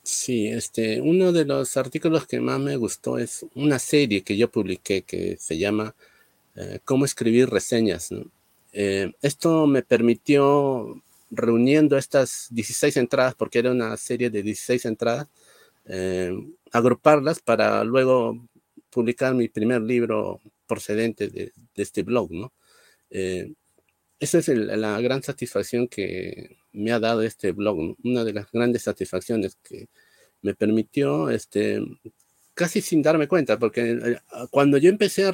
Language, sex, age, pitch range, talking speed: Spanish, male, 50-69, 110-145 Hz, 145 wpm